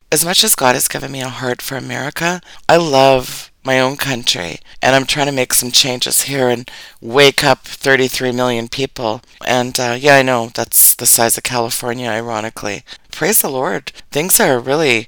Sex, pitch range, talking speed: female, 120-140 Hz, 185 wpm